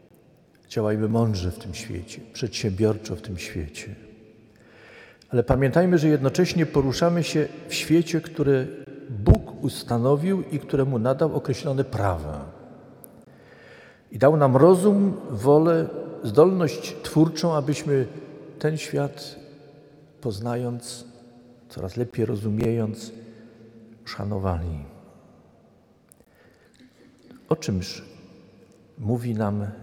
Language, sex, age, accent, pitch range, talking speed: Polish, male, 50-69, native, 110-150 Hz, 90 wpm